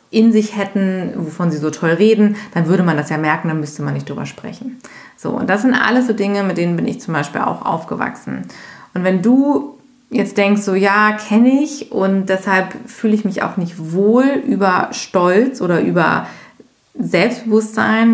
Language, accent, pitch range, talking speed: German, German, 180-220 Hz, 190 wpm